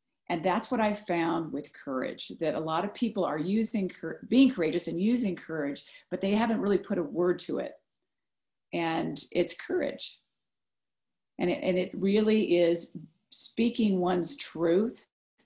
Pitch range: 175-215 Hz